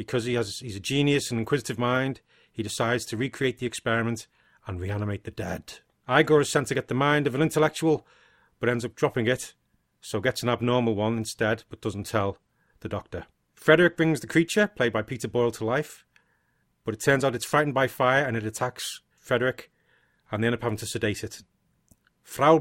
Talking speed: 200 wpm